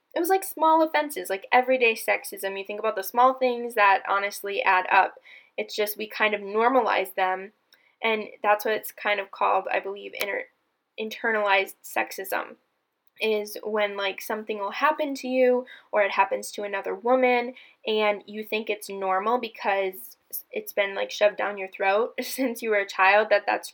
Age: 10-29